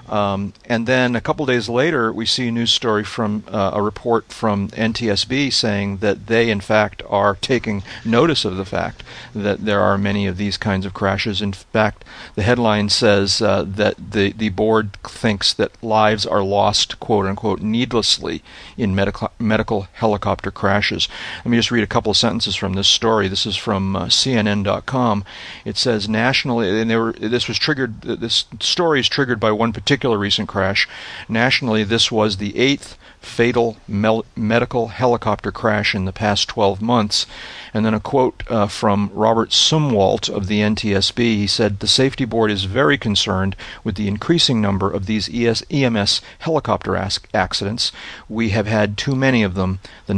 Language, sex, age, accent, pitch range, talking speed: English, male, 40-59, American, 100-115 Hz, 170 wpm